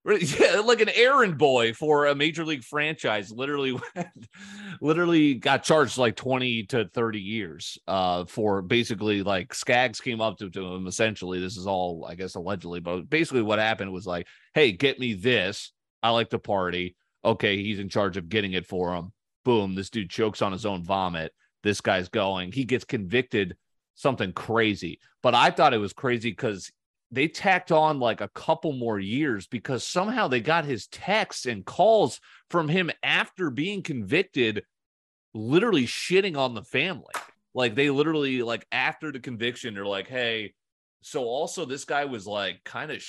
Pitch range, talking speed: 100-135 Hz, 175 wpm